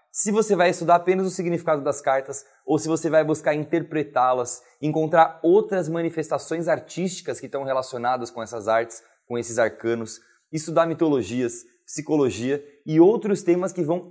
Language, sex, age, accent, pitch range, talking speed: Portuguese, male, 20-39, Brazilian, 135-180 Hz, 155 wpm